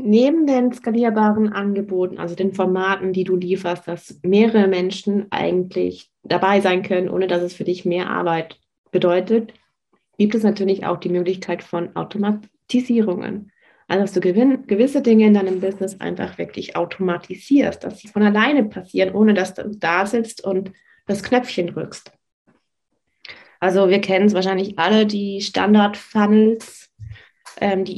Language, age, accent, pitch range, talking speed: German, 30-49, German, 185-215 Hz, 145 wpm